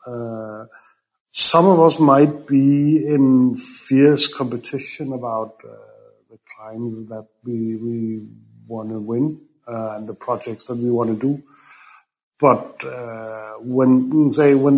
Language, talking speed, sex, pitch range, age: English, 135 wpm, male, 120-150 Hz, 50-69